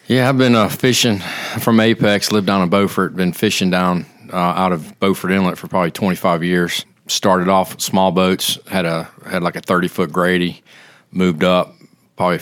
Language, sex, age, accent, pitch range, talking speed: English, male, 40-59, American, 85-95 Hz, 180 wpm